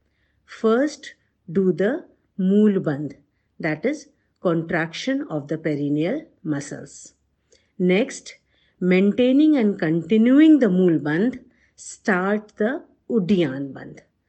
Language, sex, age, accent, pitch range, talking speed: English, female, 50-69, Indian, 170-255 Hz, 95 wpm